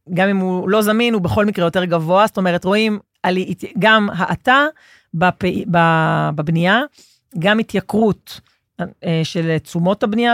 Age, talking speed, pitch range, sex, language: 40-59, 120 wpm, 165-205 Hz, female, Hebrew